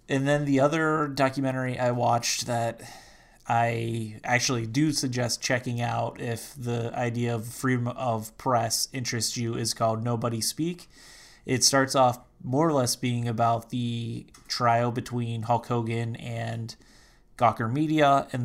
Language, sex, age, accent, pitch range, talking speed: English, male, 20-39, American, 115-125 Hz, 145 wpm